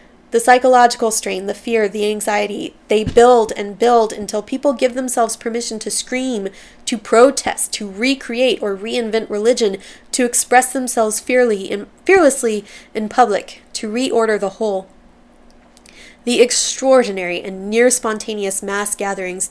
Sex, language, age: female, English, 20-39